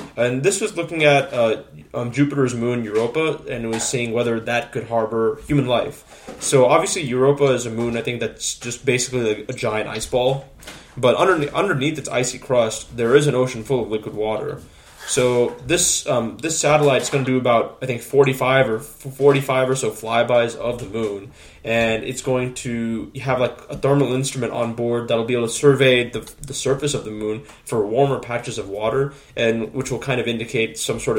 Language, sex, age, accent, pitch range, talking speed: English, male, 20-39, American, 115-140 Hz, 205 wpm